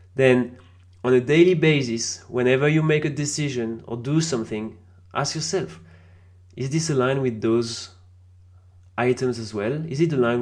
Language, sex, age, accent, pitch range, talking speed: English, male, 30-49, French, 110-135 Hz, 150 wpm